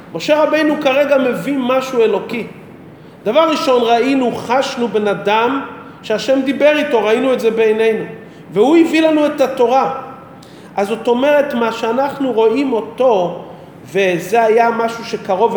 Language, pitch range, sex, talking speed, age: Hebrew, 190-250 Hz, male, 135 wpm, 40-59